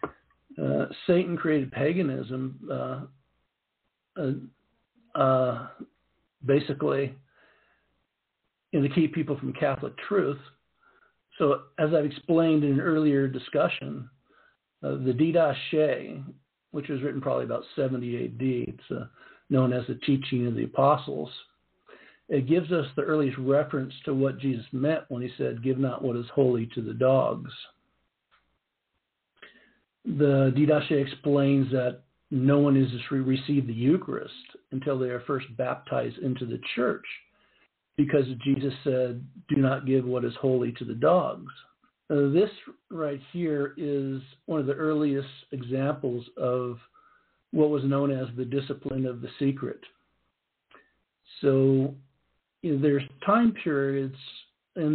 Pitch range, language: 130-145 Hz, English